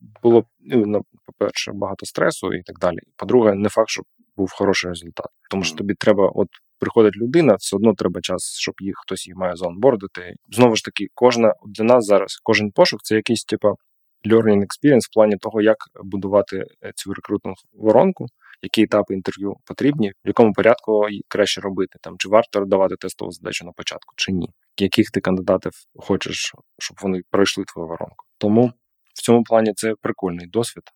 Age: 20-39